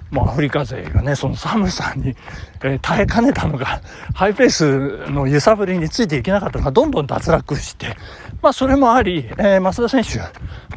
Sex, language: male, Japanese